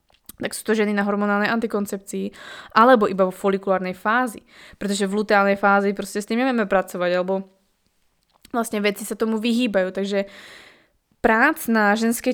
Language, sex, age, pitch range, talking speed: Slovak, female, 20-39, 200-235 Hz, 145 wpm